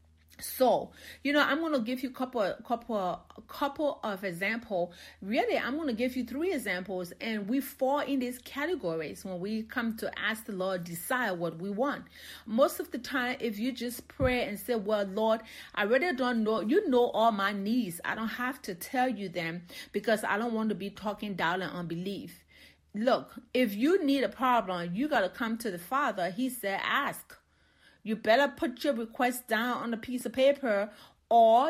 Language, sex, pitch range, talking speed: English, female, 205-265 Hz, 195 wpm